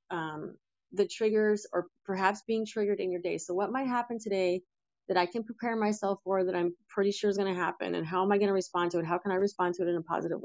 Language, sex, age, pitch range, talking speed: English, female, 30-49, 175-215 Hz, 270 wpm